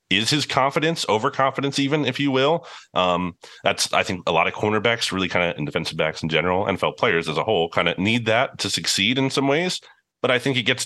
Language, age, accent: English, 30-49, American